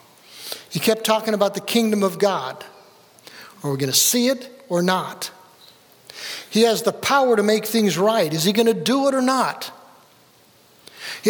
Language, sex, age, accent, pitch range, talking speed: English, male, 60-79, American, 175-225 Hz, 175 wpm